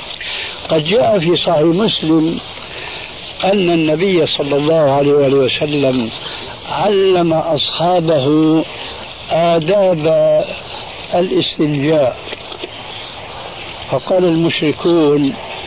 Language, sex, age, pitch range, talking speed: Arabic, male, 60-79, 145-175 Hz, 65 wpm